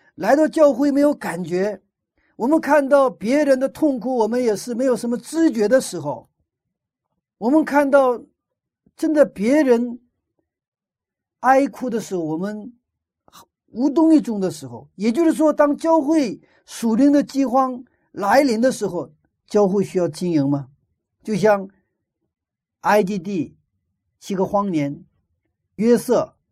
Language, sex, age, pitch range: Chinese, male, 50-69, 155-260 Hz